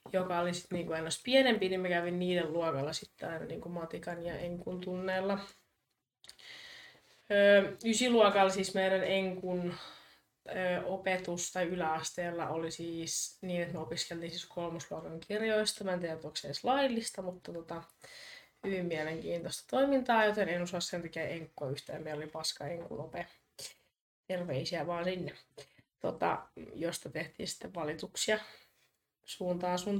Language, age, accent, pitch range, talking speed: Finnish, 20-39, native, 170-205 Hz, 125 wpm